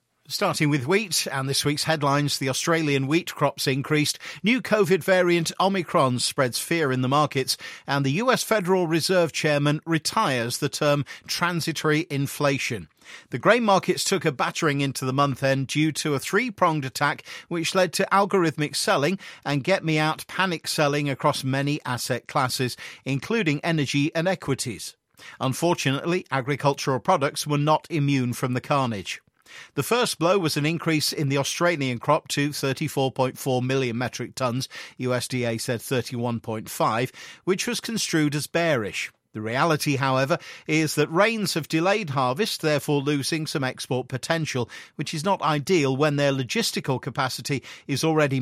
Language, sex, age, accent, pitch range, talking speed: English, male, 50-69, British, 130-165 Hz, 150 wpm